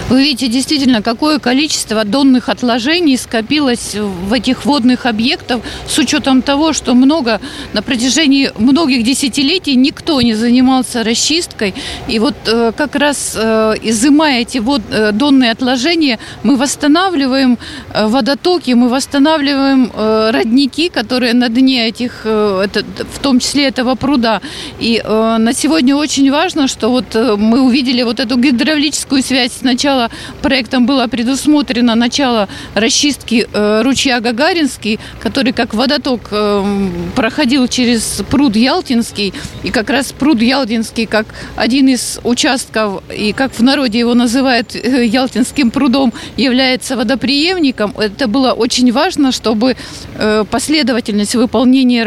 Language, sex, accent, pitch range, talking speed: Russian, female, native, 230-275 Hz, 120 wpm